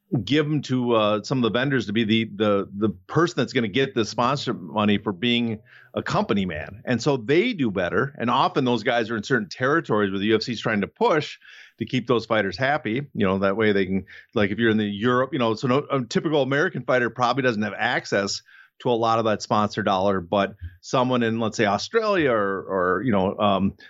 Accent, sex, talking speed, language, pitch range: American, male, 235 wpm, English, 105-145 Hz